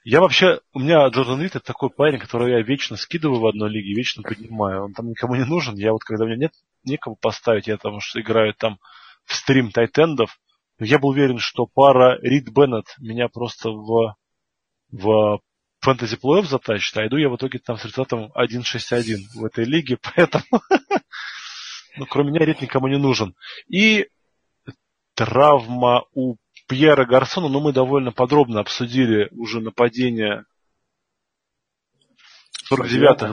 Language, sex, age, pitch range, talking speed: Russian, male, 20-39, 115-140 Hz, 155 wpm